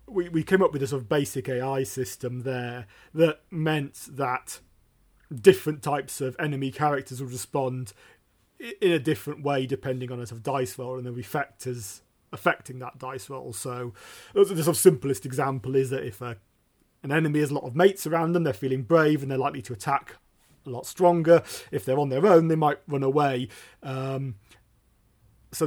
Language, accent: English, British